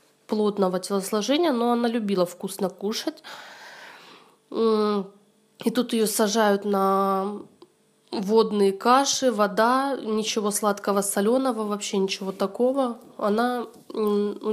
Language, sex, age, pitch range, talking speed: Russian, female, 20-39, 200-235 Hz, 95 wpm